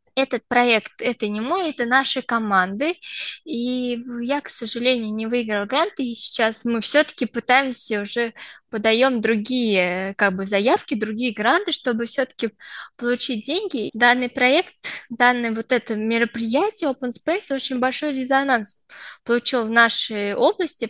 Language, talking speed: Russian, 140 wpm